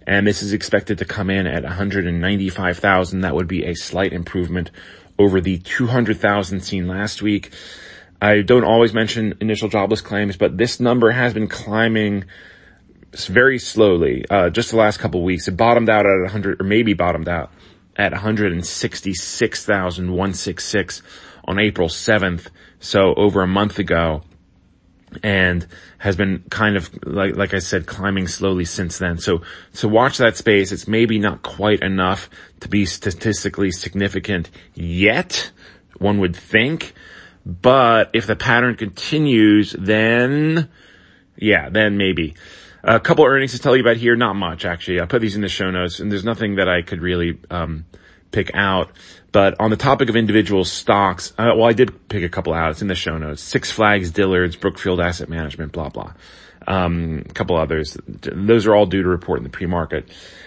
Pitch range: 90-105 Hz